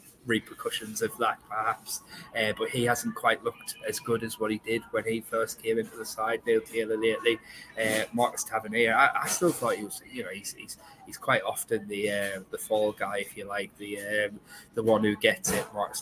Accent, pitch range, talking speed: British, 105-115 Hz, 215 wpm